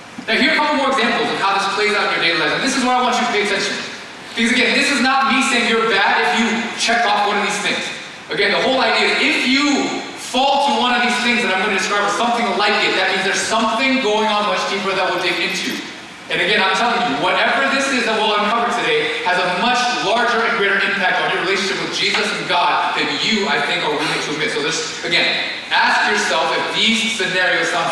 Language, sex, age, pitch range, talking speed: English, male, 20-39, 205-245 Hz, 260 wpm